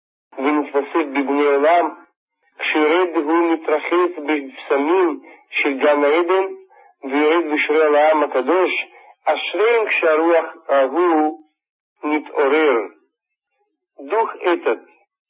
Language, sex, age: Russian, male, 50-69